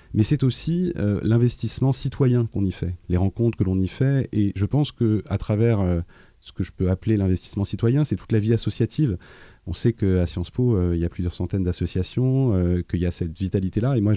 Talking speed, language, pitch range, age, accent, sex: 215 wpm, French, 95-115 Hz, 30-49, French, male